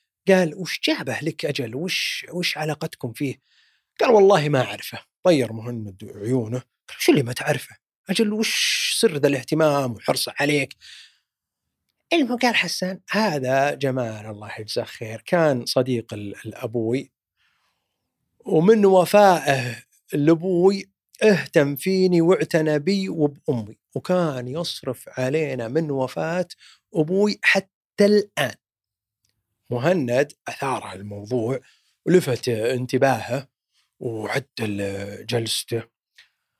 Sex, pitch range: male, 120-170 Hz